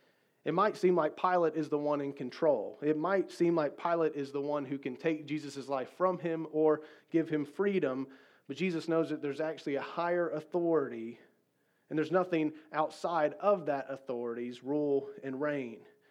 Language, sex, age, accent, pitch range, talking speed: English, male, 30-49, American, 135-160 Hz, 180 wpm